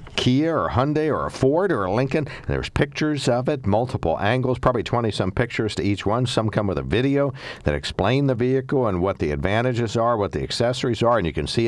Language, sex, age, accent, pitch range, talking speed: English, male, 60-79, American, 85-125 Hz, 225 wpm